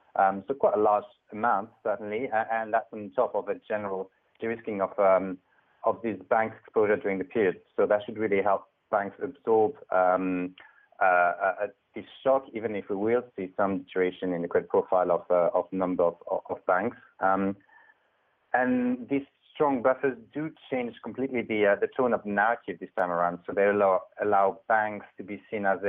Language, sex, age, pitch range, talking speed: English, male, 30-49, 95-120 Hz, 190 wpm